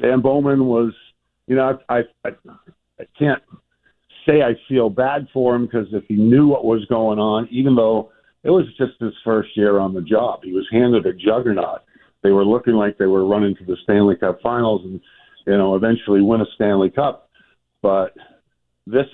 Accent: American